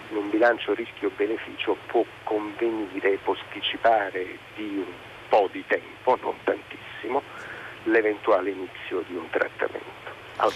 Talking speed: 115 wpm